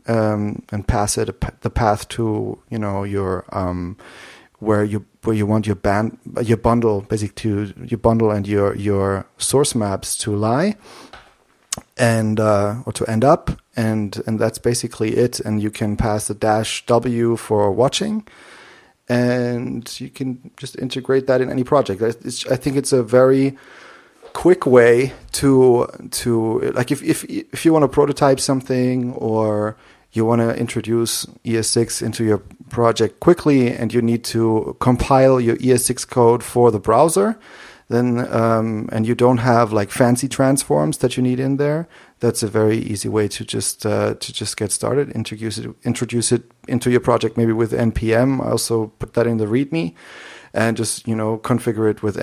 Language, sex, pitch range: English, male, 110-130 Hz